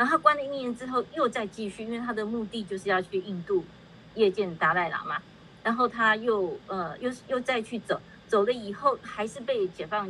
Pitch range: 185-230 Hz